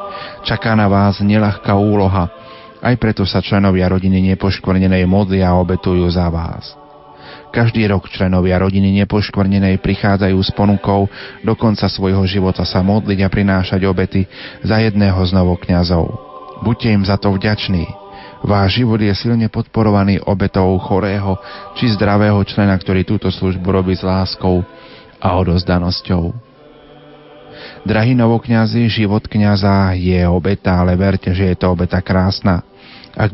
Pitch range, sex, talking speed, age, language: 95-110 Hz, male, 135 wpm, 30-49, Slovak